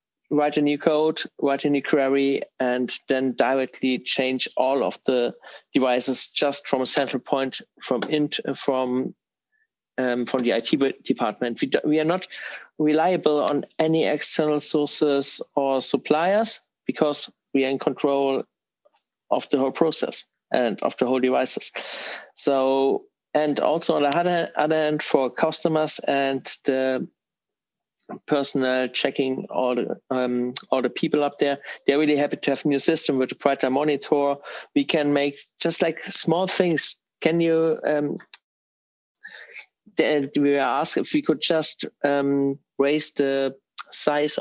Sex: male